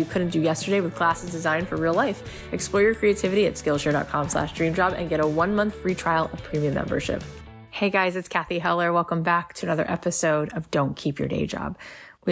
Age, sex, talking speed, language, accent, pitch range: 20-39, female, 215 wpm, English, American, 150-180 Hz